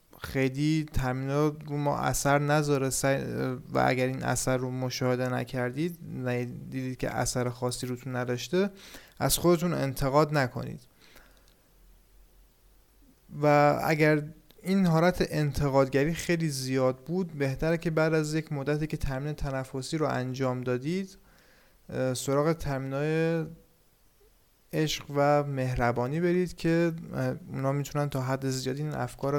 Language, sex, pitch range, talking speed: Persian, male, 130-160 Hz, 120 wpm